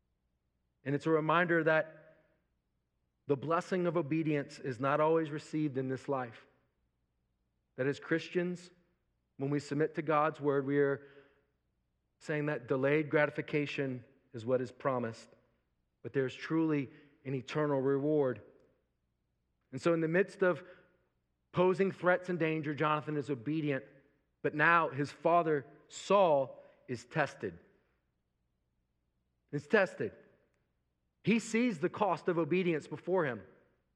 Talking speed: 125 wpm